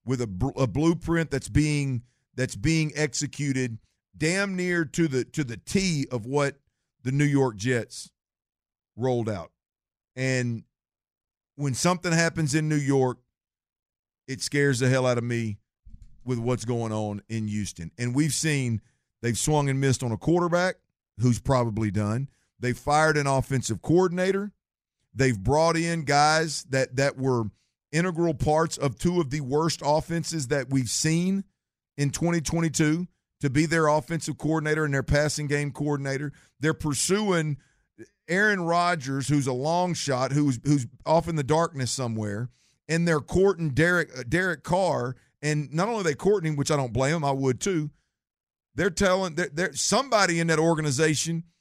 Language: English